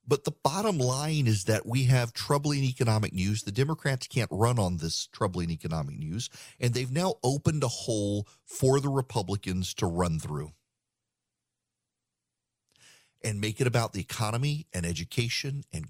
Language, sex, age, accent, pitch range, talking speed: English, male, 40-59, American, 105-145 Hz, 155 wpm